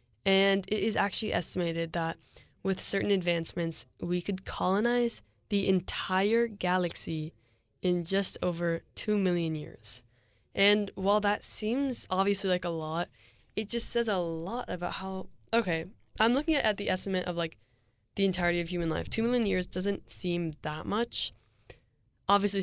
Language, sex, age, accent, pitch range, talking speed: English, female, 10-29, American, 165-195 Hz, 150 wpm